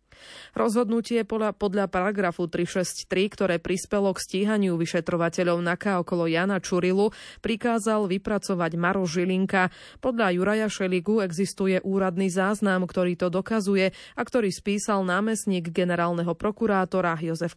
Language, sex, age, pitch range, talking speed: Slovak, female, 20-39, 180-210 Hz, 115 wpm